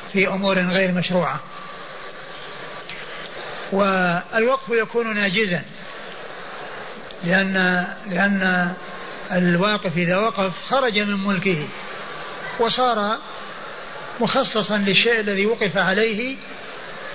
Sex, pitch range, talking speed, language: male, 185-215 Hz, 75 wpm, Arabic